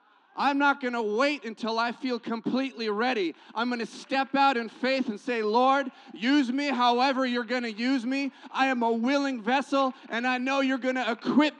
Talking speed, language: 205 wpm, English